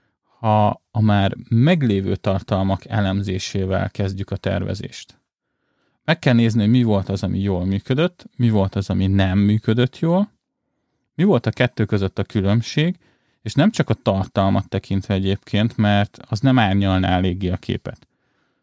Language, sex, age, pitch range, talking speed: Hungarian, male, 30-49, 95-115 Hz, 155 wpm